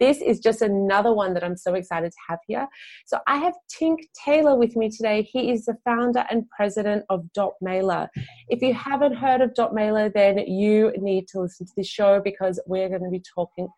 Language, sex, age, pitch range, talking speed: English, female, 30-49, 190-240 Hz, 210 wpm